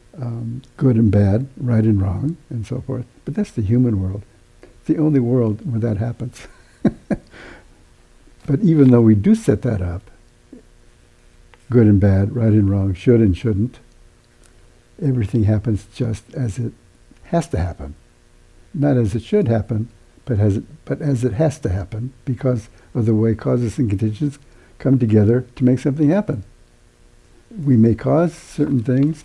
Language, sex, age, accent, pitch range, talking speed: English, male, 60-79, American, 110-130 Hz, 160 wpm